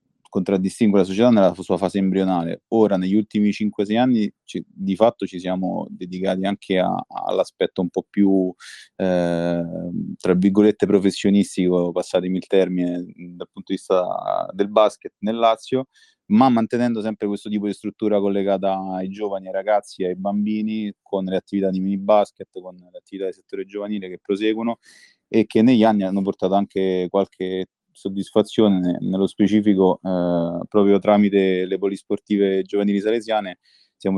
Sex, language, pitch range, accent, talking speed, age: male, Italian, 90-105 Hz, native, 145 wpm, 30-49